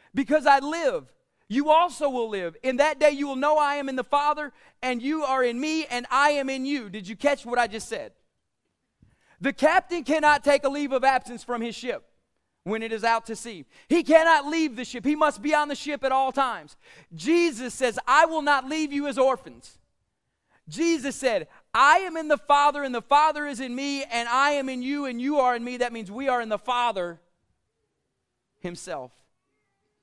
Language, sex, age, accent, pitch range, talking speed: English, male, 30-49, American, 230-285 Hz, 210 wpm